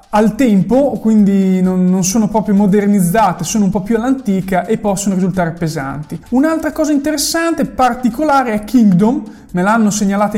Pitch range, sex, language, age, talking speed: 185-230 Hz, male, Italian, 20-39, 145 wpm